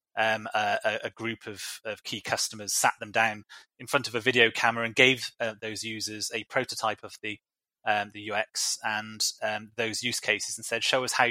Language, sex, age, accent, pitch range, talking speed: English, male, 30-49, British, 105-125 Hz, 205 wpm